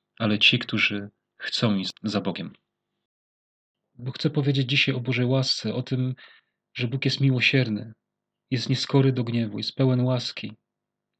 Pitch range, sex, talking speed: 110-130 Hz, male, 145 wpm